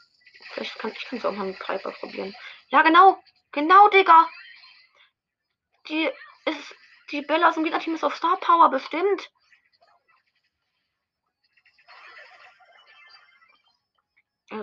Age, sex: 20-39, female